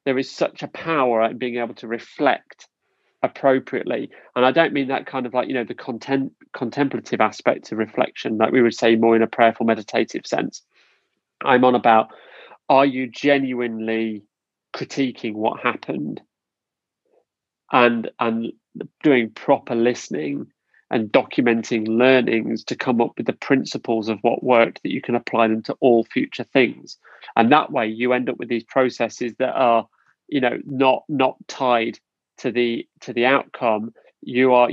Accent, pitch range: British, 115-130 Hz